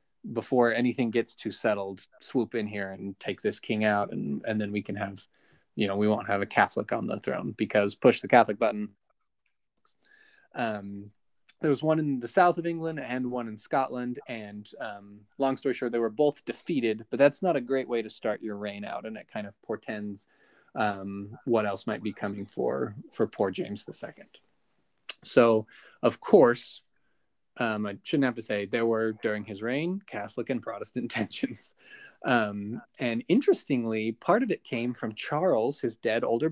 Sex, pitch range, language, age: male, 105-135 Hz, English, 20-39